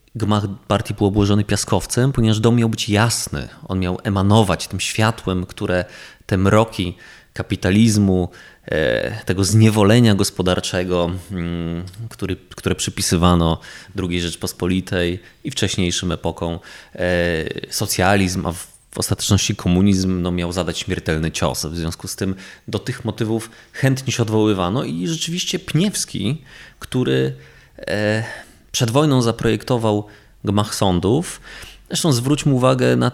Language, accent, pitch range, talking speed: Polish, native, 90-115 Hz, 110 wpm